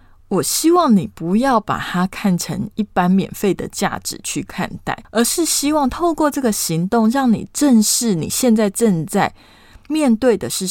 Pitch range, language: 180-250 Hz, Chinese